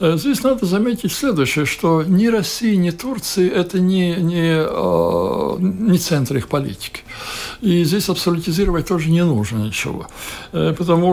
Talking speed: 130 wpm